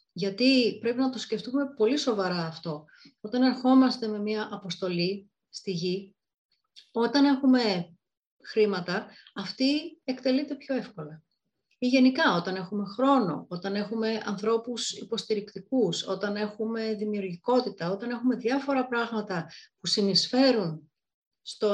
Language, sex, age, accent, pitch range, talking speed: Greek, female, 30-49, native, 190-250 Hz, 115 wpm